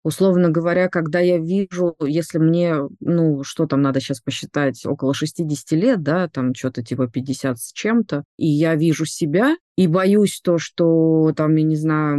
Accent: native